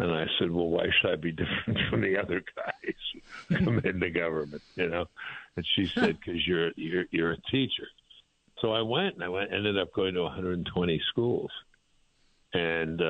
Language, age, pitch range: English, 60-79, 85-120 Hz